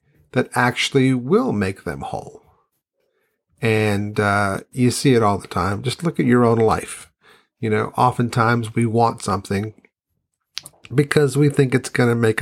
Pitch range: 110-135 Hz